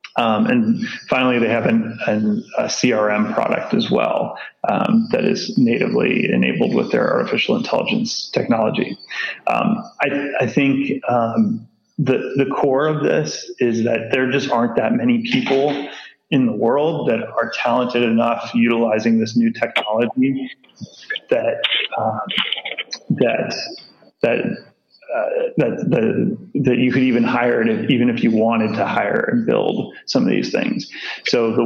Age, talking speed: 30-49, 150 wpm